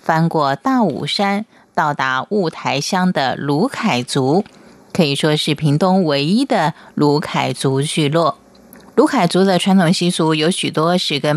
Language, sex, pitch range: Chinese, female, 155-215 Hz